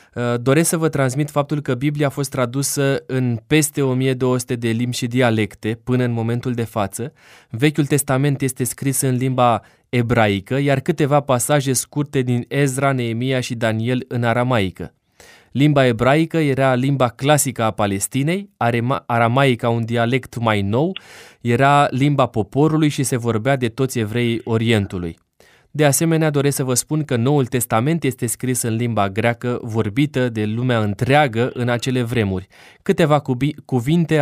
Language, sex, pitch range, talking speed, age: Romanian, male, 120-140 Hz, 150 wpm, 20-39